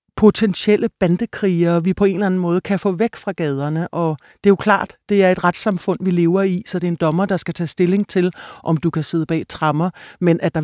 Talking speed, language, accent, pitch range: 250 wpm, Danish, native, 175-205 Hz